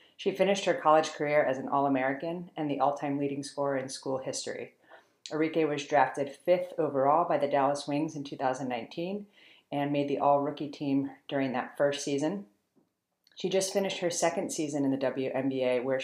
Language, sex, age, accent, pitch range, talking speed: English, female, 40-59, American, 135-150 Hz, 170 wpm